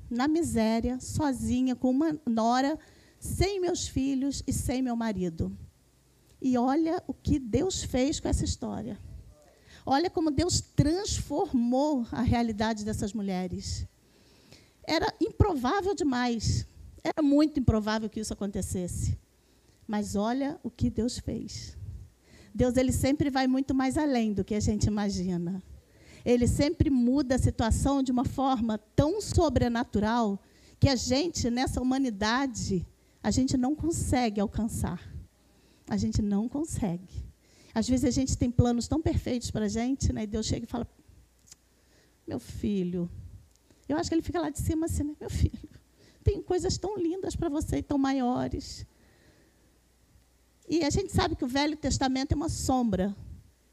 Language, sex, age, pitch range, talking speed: Portuguese, female, 40-59, 220-295 Hz, 145 wpm